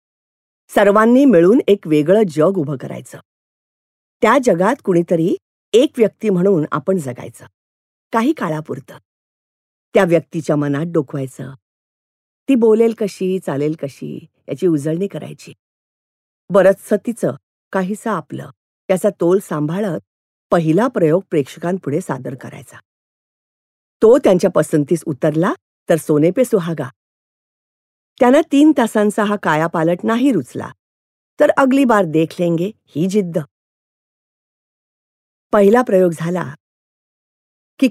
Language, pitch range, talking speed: English, 145-210 Hz, 105 wpm